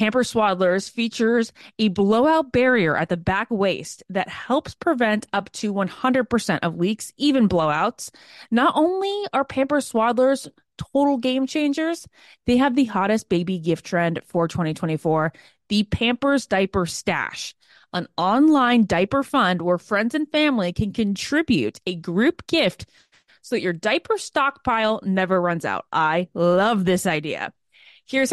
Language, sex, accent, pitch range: English, female, American, 190-275 Hz